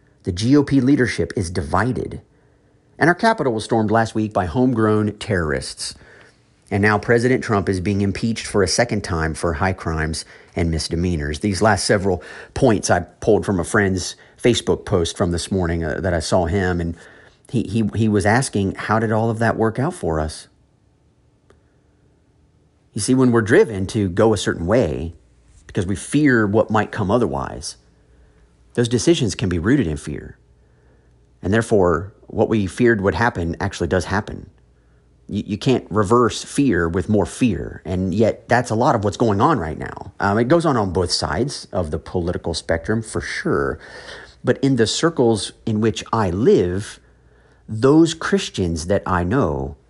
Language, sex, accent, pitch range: English, male, American, 85-115 Hz